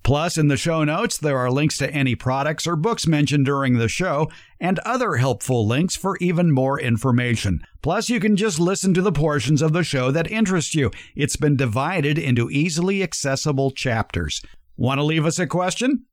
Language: English